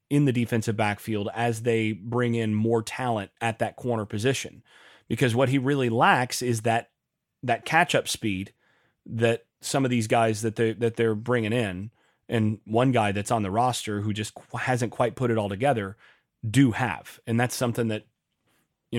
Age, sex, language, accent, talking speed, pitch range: 30-49, male, English, American, 185 wpm, 110-135 Hz